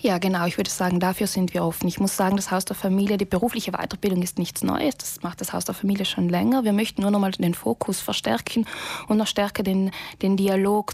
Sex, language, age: female, German, 20-39